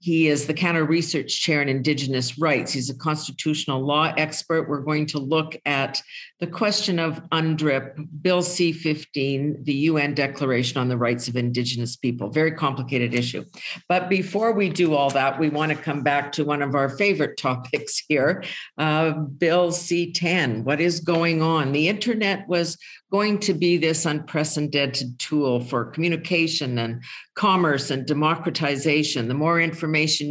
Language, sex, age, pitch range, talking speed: English, female, 50-69, 135-165 Hz, 160 wpm